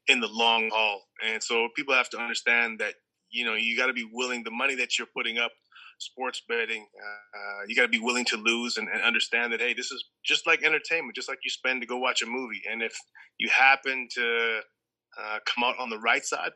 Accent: American